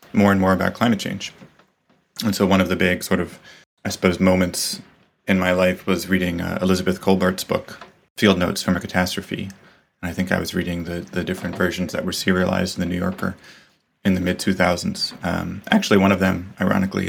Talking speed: 205 wpm